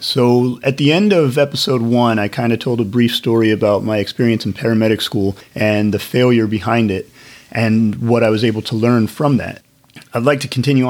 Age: 30-49